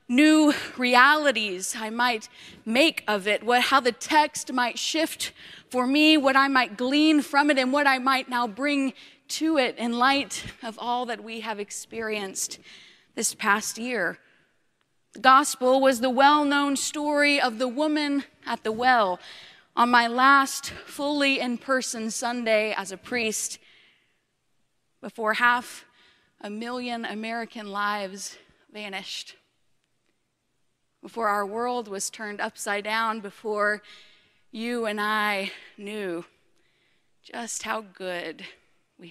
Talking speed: 130 wpm